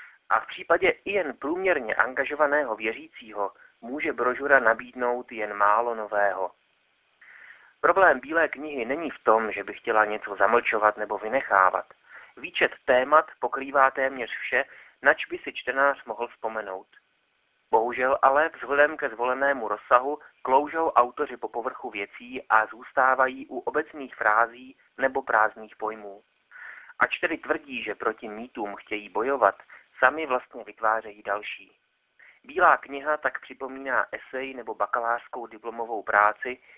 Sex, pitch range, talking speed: male, 110-135 Hz, 125 wpm